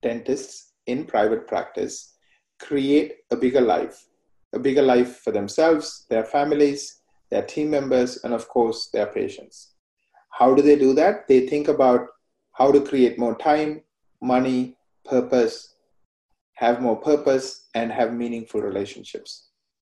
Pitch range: 125-160 Hz